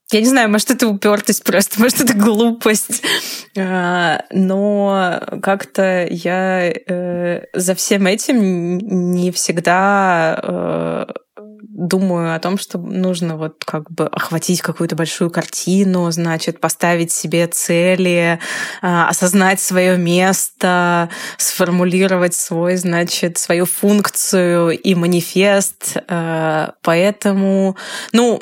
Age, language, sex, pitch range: 20-39, Russian, female, 170-190 Hz